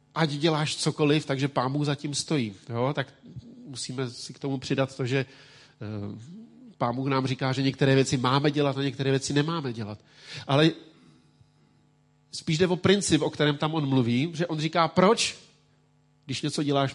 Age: 40-59